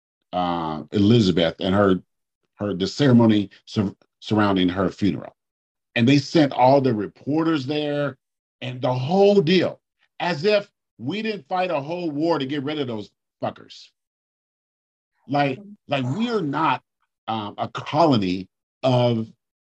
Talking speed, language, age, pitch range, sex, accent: 135 wpm, English, 50-69, 120-170 Hz, male, American